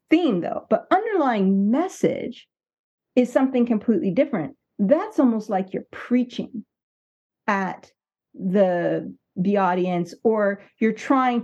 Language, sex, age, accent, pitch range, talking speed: English, female, 50-69, American, 200-270 Hz, 110 wpm